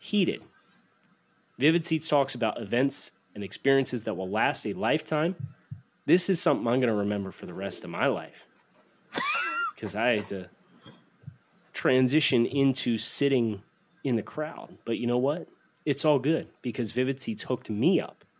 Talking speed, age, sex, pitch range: 160 wpm, 30-49, male, 110-140 Hz